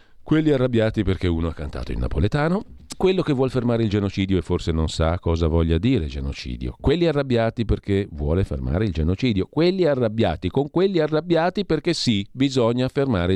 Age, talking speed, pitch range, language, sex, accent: 50-69, 170 wpm, 90-130 Hz, Italian, male, native